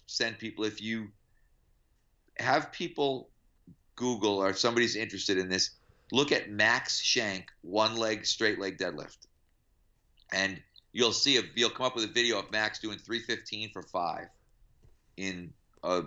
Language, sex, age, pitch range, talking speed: English, male, 40-59, 90-115 Hz, 145 wpm